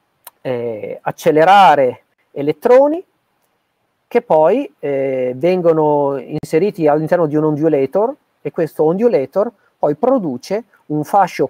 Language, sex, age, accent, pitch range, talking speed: Italian, male, 40-59, native, 145-200 Hz, 100 wpm